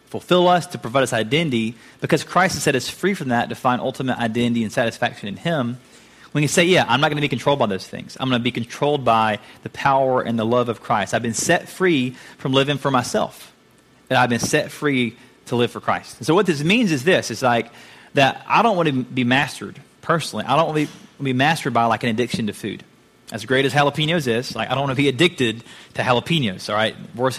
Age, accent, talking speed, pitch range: 30-49, American, 240 wpm, 120-165 Hz